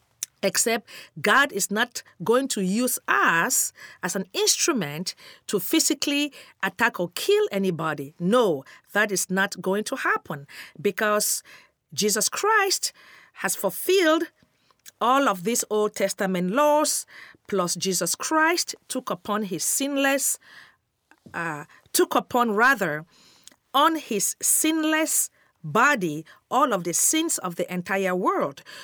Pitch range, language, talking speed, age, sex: 180-275 Hz, English, 120 wpm, 50-69, female